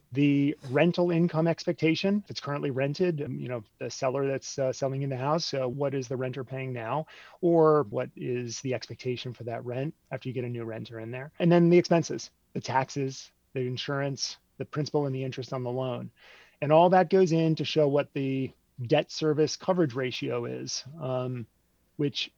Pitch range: 130-155 Hz